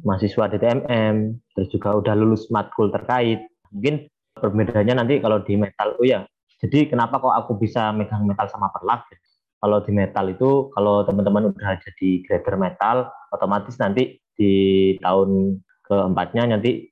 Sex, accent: male, native